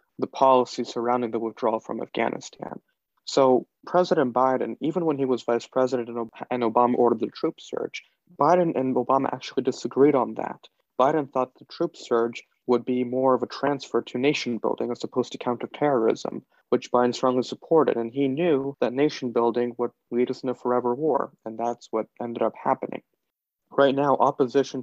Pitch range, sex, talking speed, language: 120-145 Hz, male, 175 wpm, English